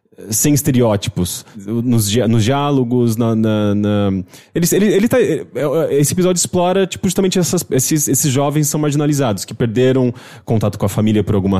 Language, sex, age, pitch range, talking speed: English, male, 20-39, 110-145 Hz, 160 wpm